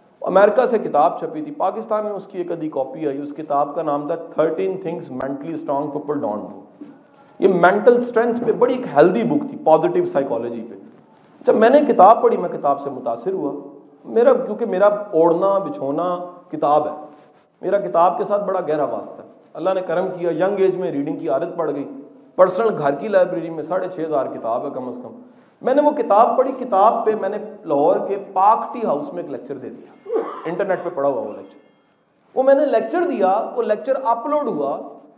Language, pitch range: English, 155-230 Hz